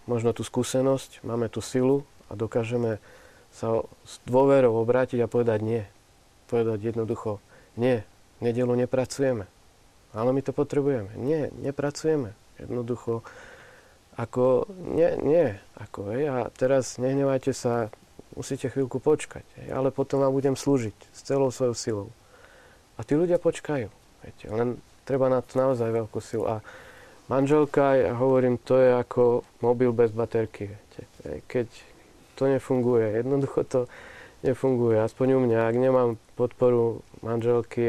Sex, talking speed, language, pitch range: male, 135 wpm, Slovak, 110-130 Hz